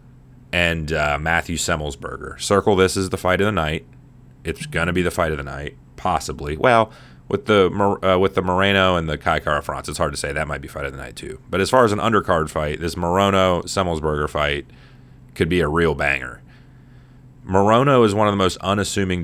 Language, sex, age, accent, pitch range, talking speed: English, male, 30-49, American, 80-100 Hz, 210 wpm